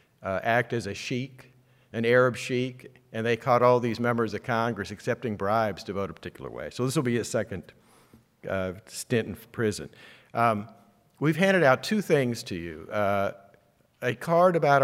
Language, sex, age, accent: English, male, 50-69, American